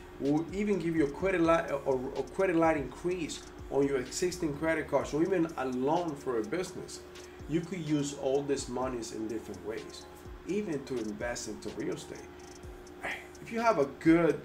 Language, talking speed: English, 185 wpm